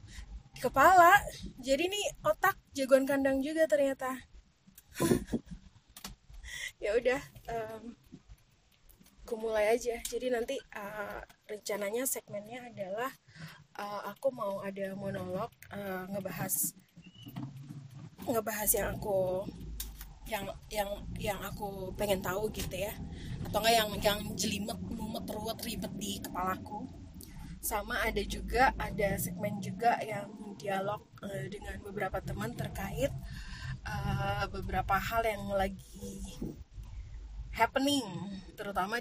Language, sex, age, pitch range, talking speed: Indonesian, female, 20-39, 190-240 Hz, 105 wpm